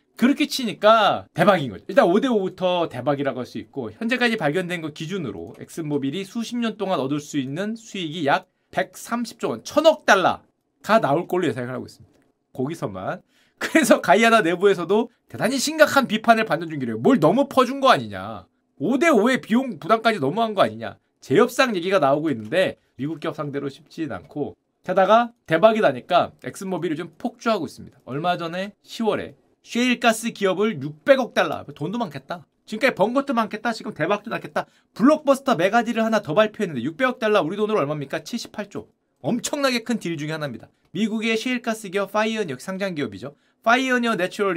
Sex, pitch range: male, 165-240 Hz